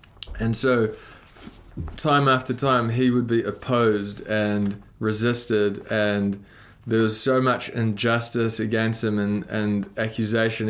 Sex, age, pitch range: male, 20-39, 105-125 Hz